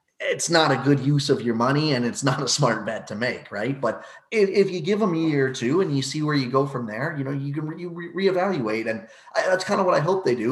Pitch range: 120-160 Hz